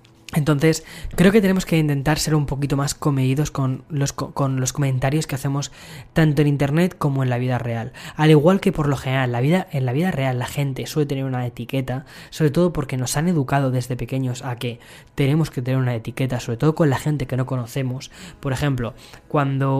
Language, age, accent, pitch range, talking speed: Spanish, 20-39, Spanish, 130-150 Hz, 210 wpm